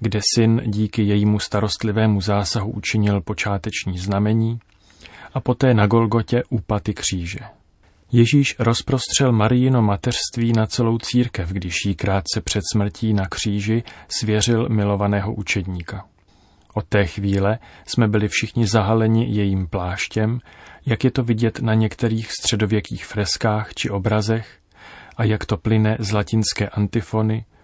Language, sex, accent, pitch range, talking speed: Czech, male, native, 100-115 Hz, 125 wpm